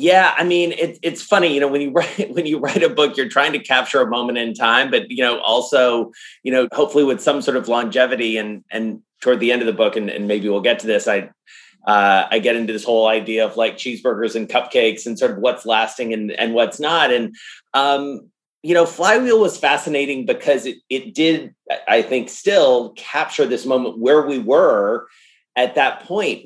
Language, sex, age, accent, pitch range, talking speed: English, male, 30-49, American, 115-150 Hz, 220 wpm